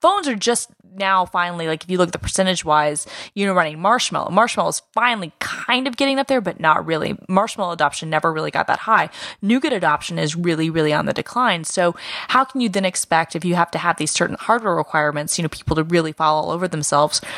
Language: English